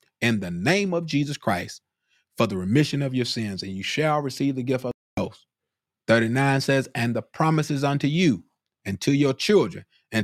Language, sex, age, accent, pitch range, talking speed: English, male, 30-49, American, 105-135 Hz, 195 wpm